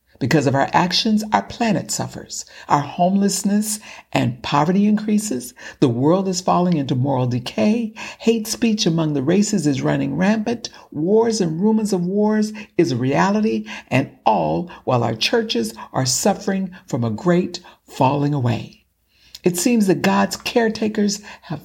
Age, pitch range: 60-79, 145-210 Hz